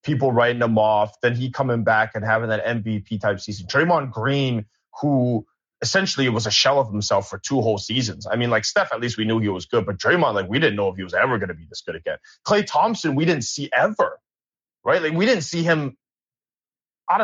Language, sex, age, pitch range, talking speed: English, male, 20-39, 110-155 Hz, 230 wpm